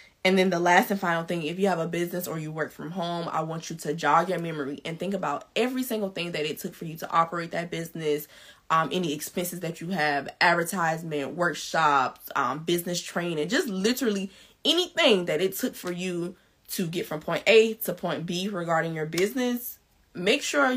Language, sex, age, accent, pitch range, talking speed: English, female, 20-39, American, 160-200 Hz, 205 wpm